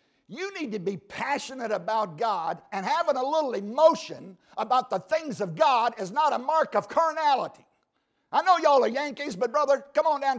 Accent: American